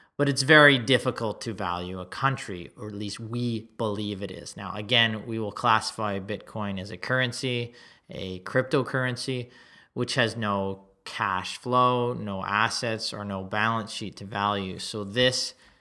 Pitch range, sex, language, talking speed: 100-120 Hz, male, English, 155 wpm